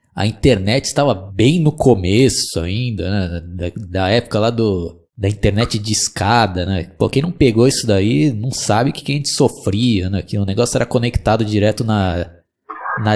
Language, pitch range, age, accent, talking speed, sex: Portuguese, 100-135 Hz, 20-39, Brazilian, 185 wpm, male